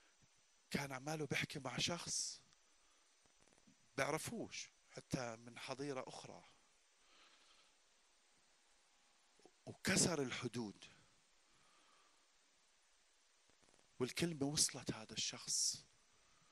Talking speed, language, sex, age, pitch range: 60 wpm, Arabic, male, 40-59, 125-180 Hz